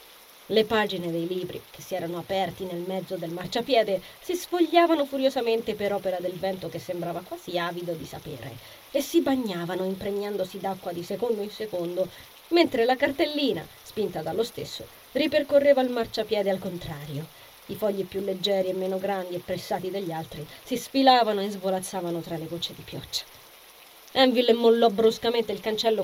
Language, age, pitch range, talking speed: Italian, 20-39, 180-270 Hz, 160 wpm